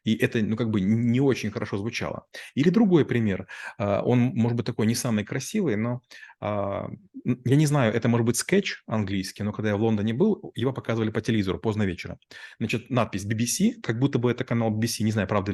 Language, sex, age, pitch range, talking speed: Russian, male, 30-49, 105-135 Hz, 200 wpm